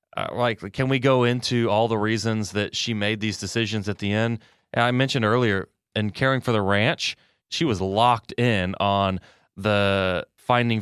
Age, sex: 30-49, male